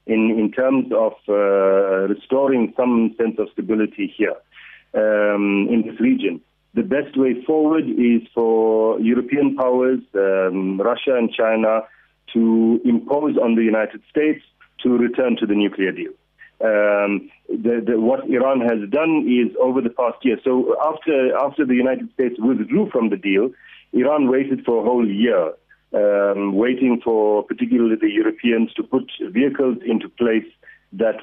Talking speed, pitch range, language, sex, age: 150 wpm, 105-130 Hz, English, male, 40-59